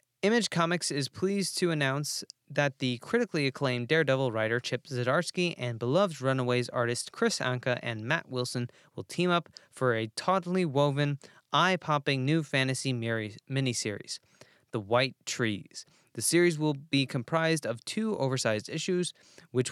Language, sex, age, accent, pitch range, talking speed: English, male, 20-39, American, 120-160 Hz, 145 wpm